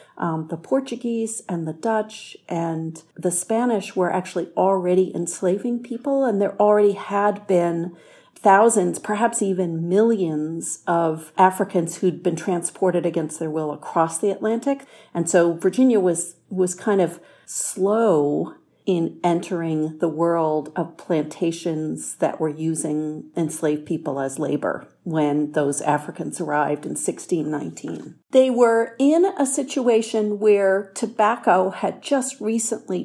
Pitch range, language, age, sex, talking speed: 160-205 Hz, English, 50-69, female, 130 wpm